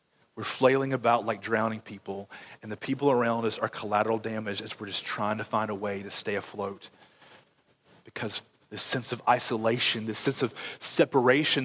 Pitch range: 110-135 Hz